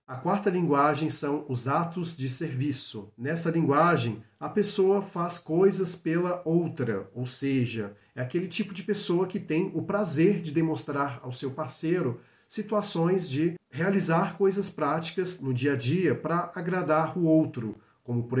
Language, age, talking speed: Portuguese, 40-59, 155 wpm